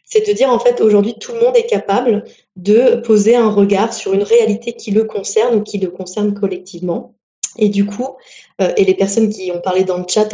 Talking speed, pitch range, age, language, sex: 225 wpm, 195-235 Hz, 20-39, French, female